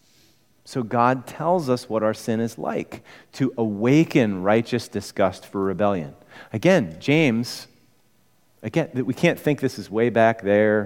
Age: 40-59